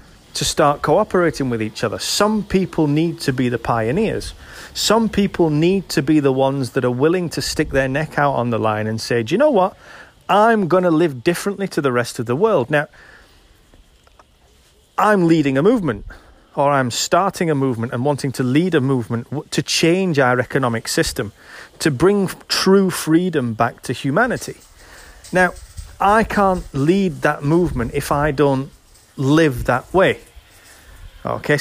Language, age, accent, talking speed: English, 30-49, British, 170 wpm